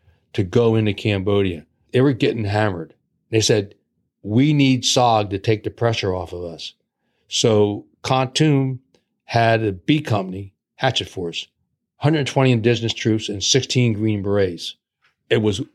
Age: 60-79